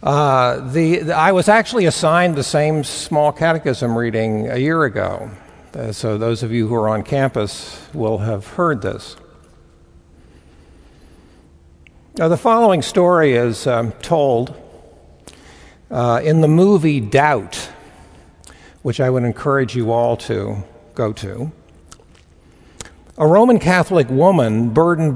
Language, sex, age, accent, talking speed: English, male, 60-79, American, 125 wpm